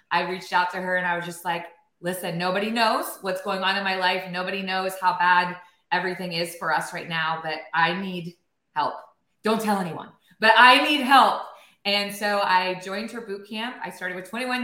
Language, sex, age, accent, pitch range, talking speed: English, female, 20-39, American, 170-210 Hz, 210 wpm